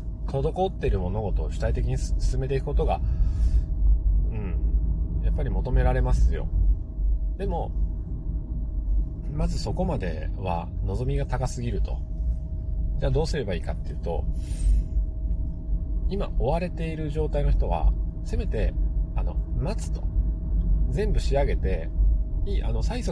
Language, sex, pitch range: Japanese, male, 80-95 Hz